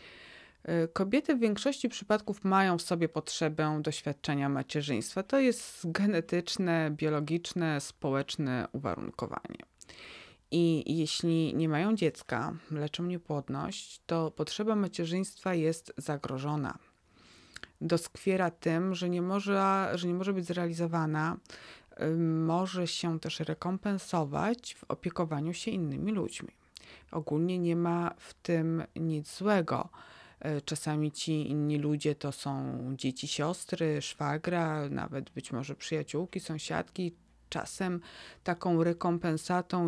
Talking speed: 105 wpm